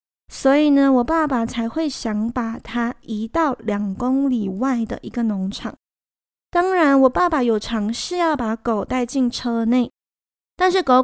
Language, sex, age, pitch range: Chinese, female, 20-39, 220-275 Hz